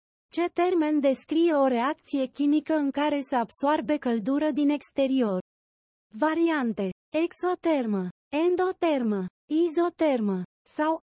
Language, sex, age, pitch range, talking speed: Romanian, female, 30-49, 235-325 Hz, 100 wpm